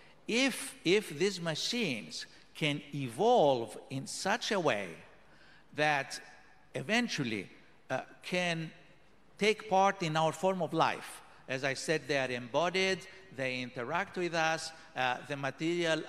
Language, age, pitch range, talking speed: Greek, 60-79, 135-170 Hz, 125 wpm